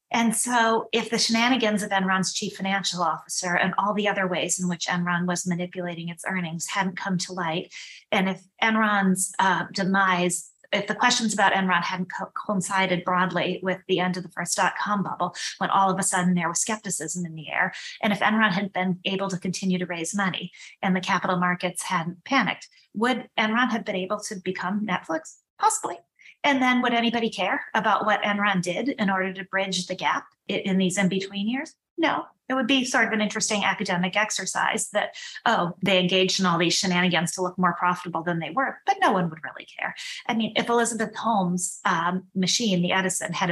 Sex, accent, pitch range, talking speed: female, American, 180-215 Hz, 200 wpm